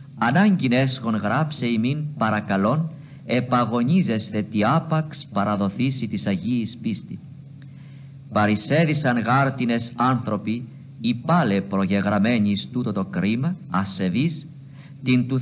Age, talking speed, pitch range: 50-69, 95 wpm, 105-150 Hz